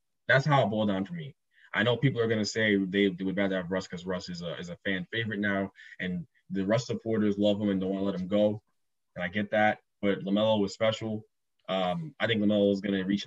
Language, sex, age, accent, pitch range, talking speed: English, male, 20-39, American, 95-110 Hz, 250 wpm